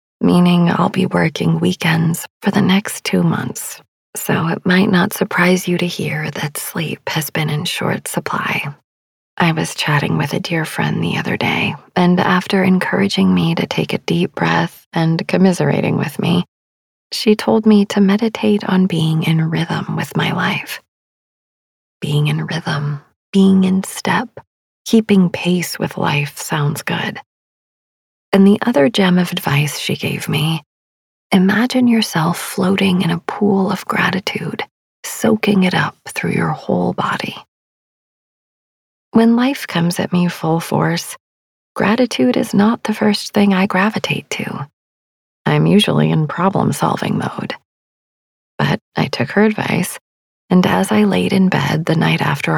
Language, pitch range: English, 160-200 Hz